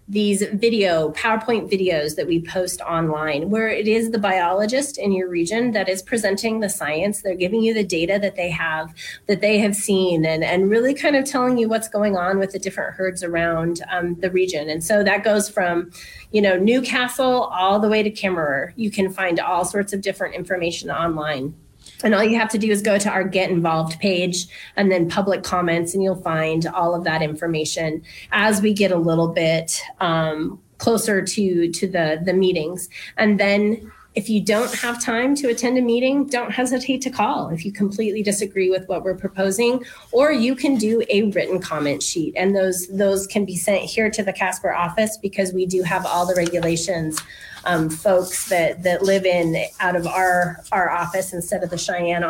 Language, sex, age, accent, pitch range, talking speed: English, female, 30-49, American, 175-215 Hz, 200 wpm